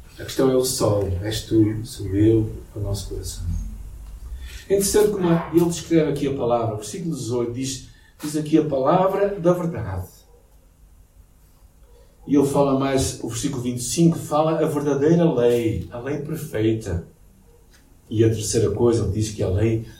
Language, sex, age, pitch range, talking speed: Portuguese, male, 50-69, 100-170 Hz, 170 wpm